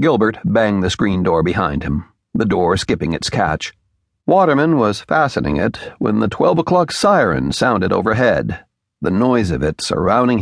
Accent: American